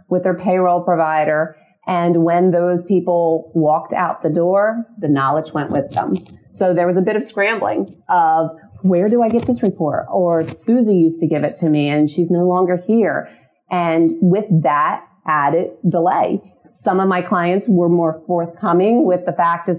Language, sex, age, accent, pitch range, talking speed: English, female, 30-49, American, 160-195 Hz, 180 wpm